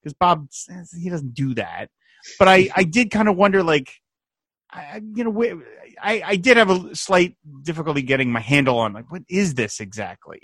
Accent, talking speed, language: American, 195 wpm, English